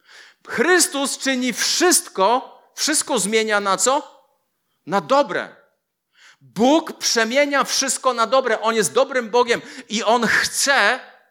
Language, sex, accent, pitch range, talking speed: Polish, male, native, 210-255 Hz, 110 wpm